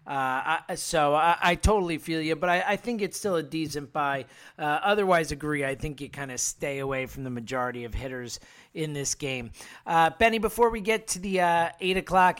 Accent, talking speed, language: American, 220 wpm, English